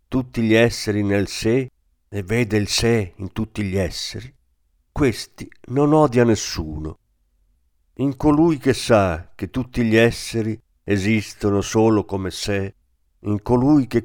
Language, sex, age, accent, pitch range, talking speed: Italian, male, 50-69, native, 90-125 Hz, 135 wpm